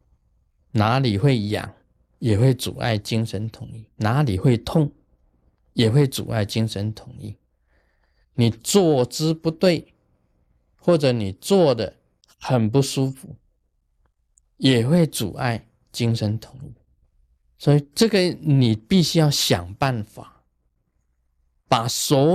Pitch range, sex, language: 100-145 Hz, male, Chinese